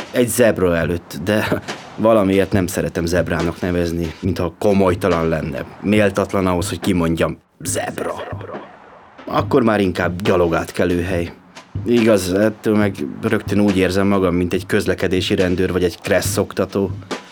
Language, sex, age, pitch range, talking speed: Hungarian, male, 30-49, 90-105 Hz, 130 wpm